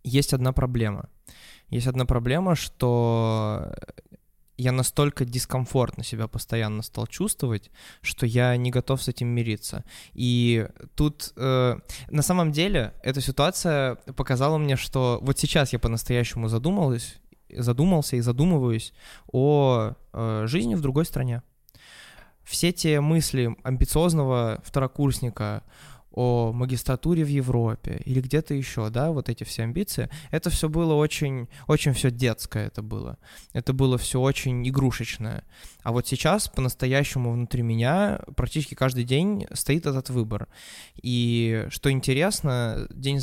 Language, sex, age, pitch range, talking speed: Russian, male, 20-39, 120-145 Hz, 130 wpm